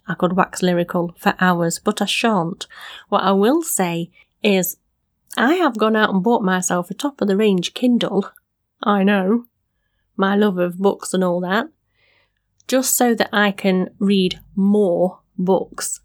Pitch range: 180-235 Hz